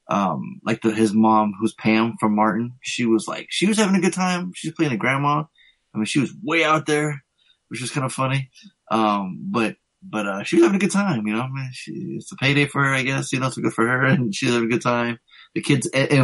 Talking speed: 265 wpm